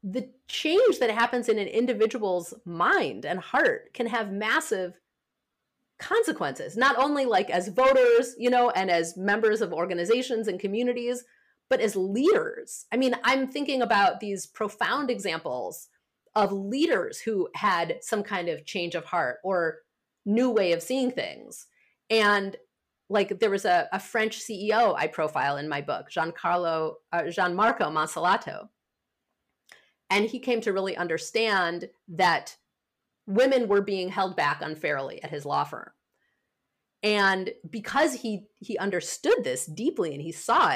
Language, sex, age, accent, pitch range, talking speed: English, female, 30-49, American, 180-255 Hz, 145 wpm